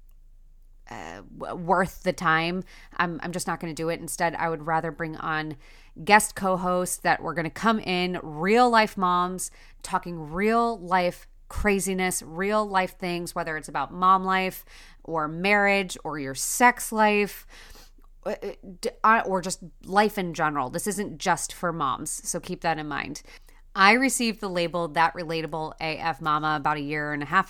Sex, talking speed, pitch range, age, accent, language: female, 165 wpm, 160-195 Hz, 30-49, American, English